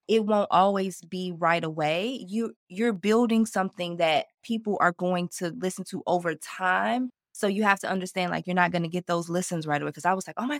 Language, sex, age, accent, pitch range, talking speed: English, female, 20-39, American, 175-225 Hz, 225 wpm